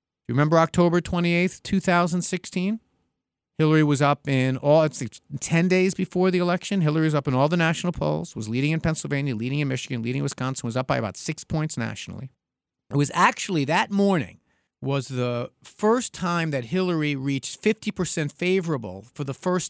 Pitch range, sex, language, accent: 130-180 Hz, male, English, American